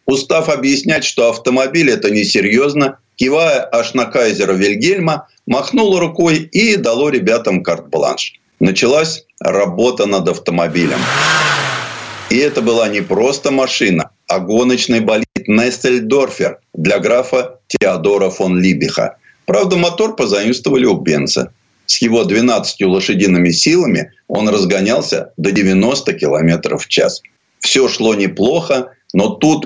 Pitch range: 105-155 Hz